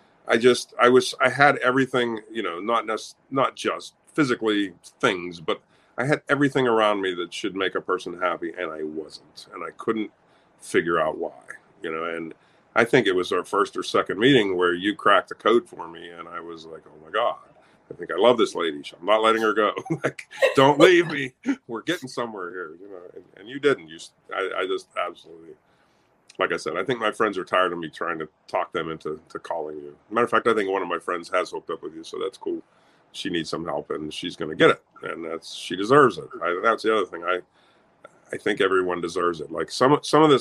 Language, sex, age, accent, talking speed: English, male, 40-59, American, 235 wpm